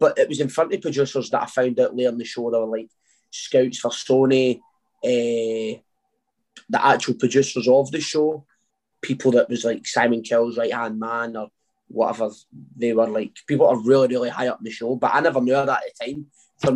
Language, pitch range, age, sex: English, 120-150 Hz, 20-39, male